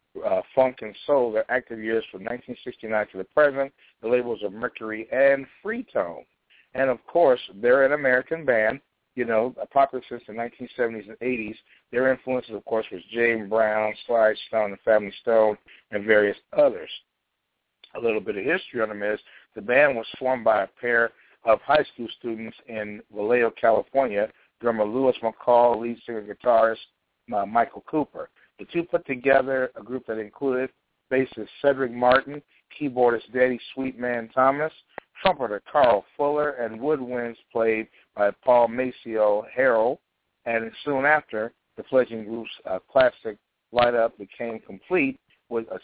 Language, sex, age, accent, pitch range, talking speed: English, male, 60-79, American, 110-130 Hz, 155 wpm